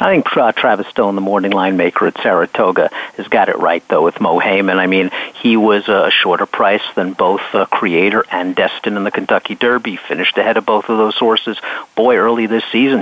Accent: American